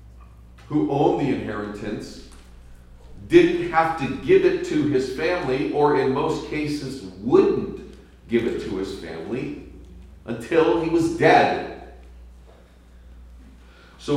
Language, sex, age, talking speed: English, male, 50-69, 115 wpm